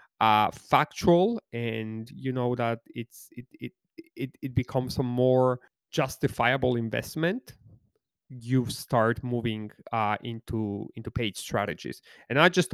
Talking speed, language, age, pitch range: 125 wpm, English, 30-49, 115-130 Hz